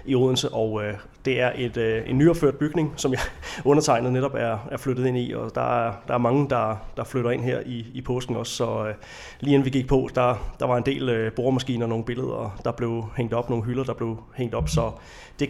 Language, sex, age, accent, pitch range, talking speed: Danish, male, 30-49, native, 115-130 Hz, 250 wpm